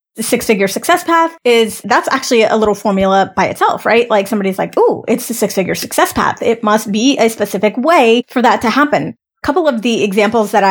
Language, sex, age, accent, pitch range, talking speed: English, female, 20-39, American, 220-275 Hz, 215 wpm